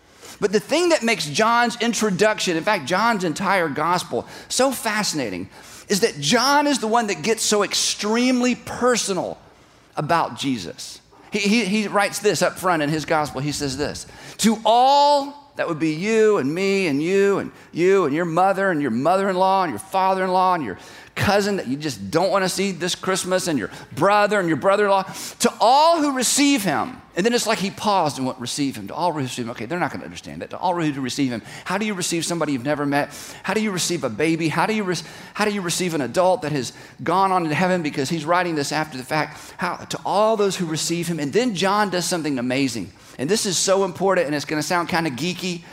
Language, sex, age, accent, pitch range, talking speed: English, male, 40-59, American, 160-215 Hz, 225 wpm